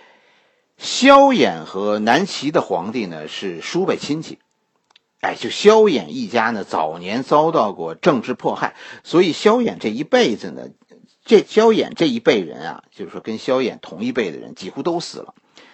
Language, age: Chinese, 50-69